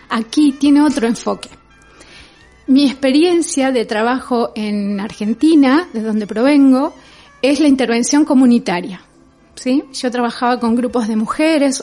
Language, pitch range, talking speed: Spanish, 225-280 Hz, 120 wpm